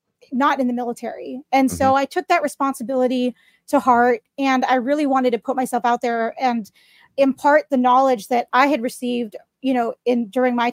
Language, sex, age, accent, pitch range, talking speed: English, female, 30-49, American, 245-280 Hz, 190 wpm